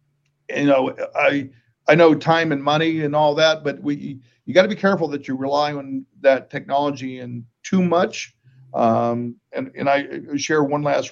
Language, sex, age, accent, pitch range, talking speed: English, male, 50-69, American, 130-155 Hz, 185 wpm